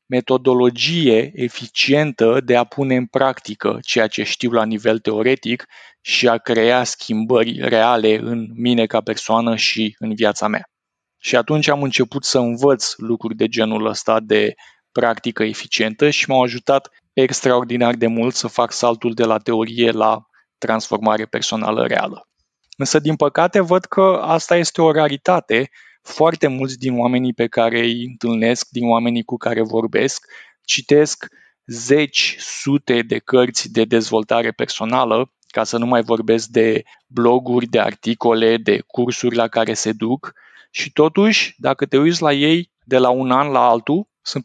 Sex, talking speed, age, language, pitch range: male, 155 wpm, 20-39, Romanian, 115-145 Hz